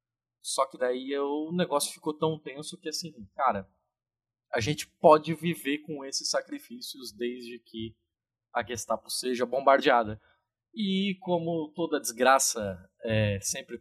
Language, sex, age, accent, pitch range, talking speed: Portuguese, male, 20-39, Brazilian, 120-175 Hz, 130 wpm